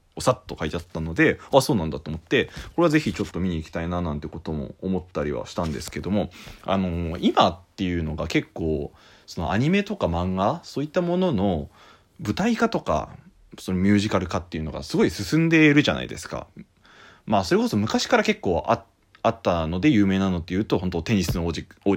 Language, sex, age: Japanese, male, 20-39